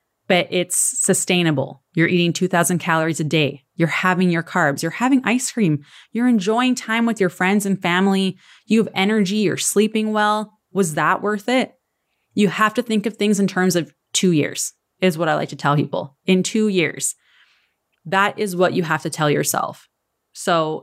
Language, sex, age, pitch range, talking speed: English, female, 20-39, 160-200 Hz, 185 wpm